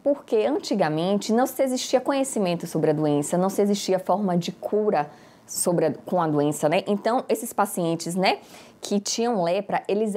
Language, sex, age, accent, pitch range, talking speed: Portuguese, female, 20-39, Brazilian, 170-235 Hz, 170 wpm